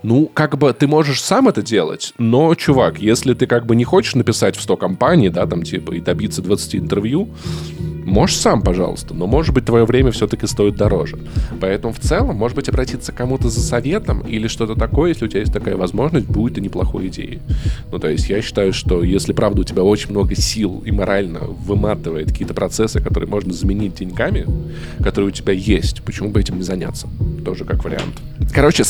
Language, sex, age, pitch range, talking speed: Russian, male, 20-39, 100-125 Hz, 200 wpm